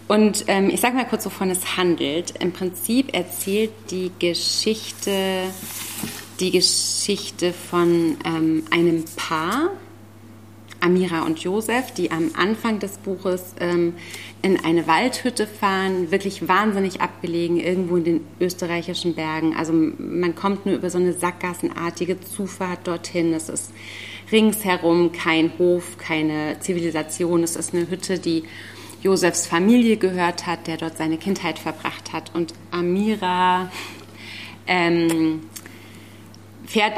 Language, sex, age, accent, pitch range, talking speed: German, female, 30-49, German, 155-185 Hz, 125 wpm